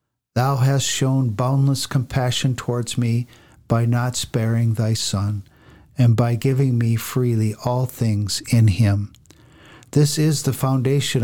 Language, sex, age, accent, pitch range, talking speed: English, male, 50-69, American, 110-135 Hz, 135 wpm